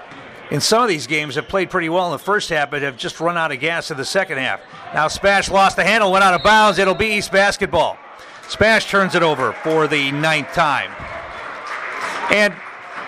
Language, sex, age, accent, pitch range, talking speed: English, male, 50-69, American, 160-205 Hz, 210 wpm